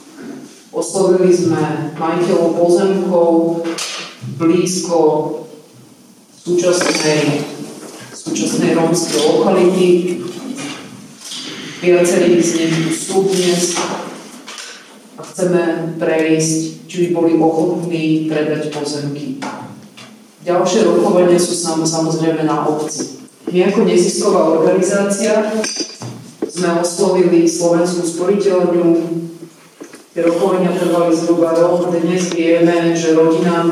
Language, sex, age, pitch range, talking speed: Slovak, female, 30-49, 160-180 Hz, 80 wpm